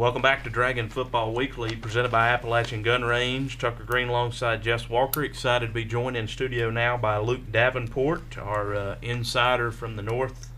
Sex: male